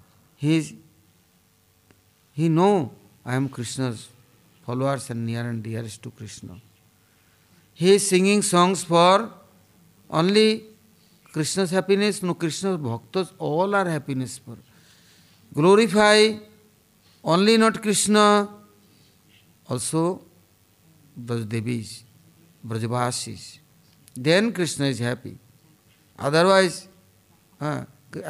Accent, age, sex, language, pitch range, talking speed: Indian, 60-79, male, English, 115-170 Hz, 85 wpm